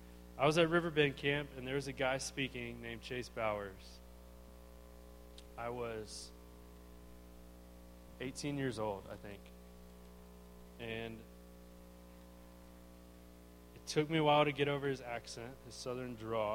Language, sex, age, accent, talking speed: English, male, 20-39, American, 125 wpm